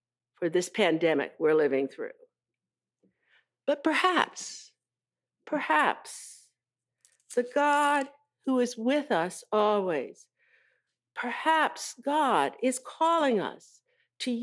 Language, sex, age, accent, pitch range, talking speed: English, female, 60-79, American, 210-300 Hz, 90 wpm